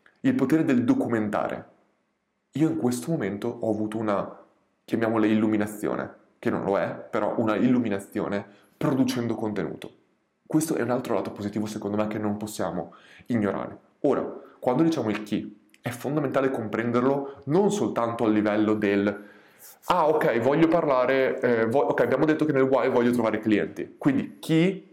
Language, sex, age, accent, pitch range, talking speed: Italian, male, 20-39, native, 110-145 Hz, 155 wpm